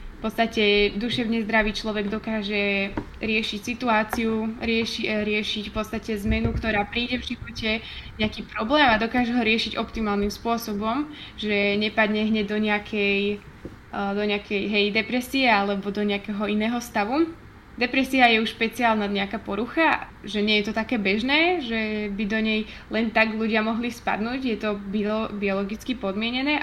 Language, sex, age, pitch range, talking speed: Slovak, female, 20-39, 210-240 Hz, 145 wpm